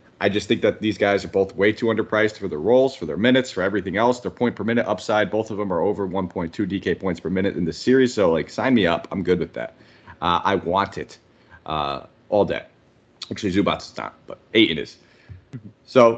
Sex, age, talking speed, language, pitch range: male, 30-49, 235 wpm, English, 95-110 Hz